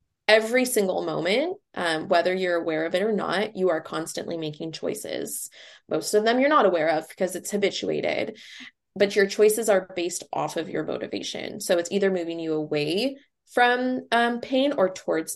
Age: 20-39